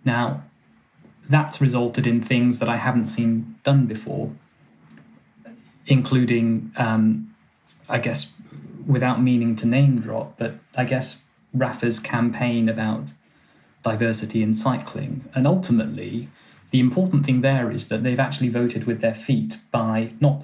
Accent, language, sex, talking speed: British, English, male, 130 wpm